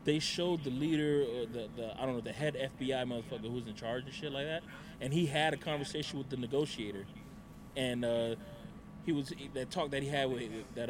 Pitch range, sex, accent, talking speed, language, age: 115-150 Hz, male, American, 230 wpm, English, 20-39